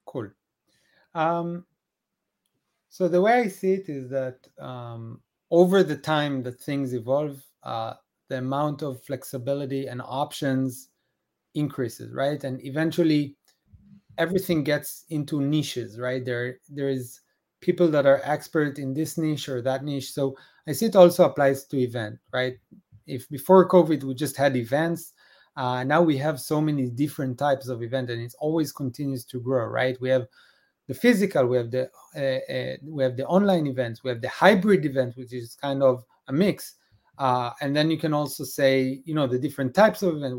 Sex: male